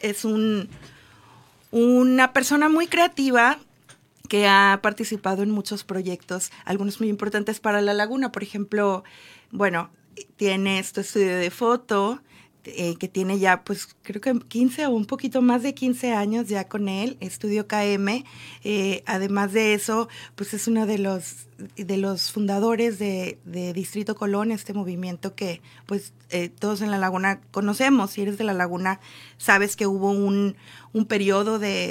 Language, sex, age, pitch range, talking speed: Spanish, female, 30-49, 190-220 Hz, 155 wpm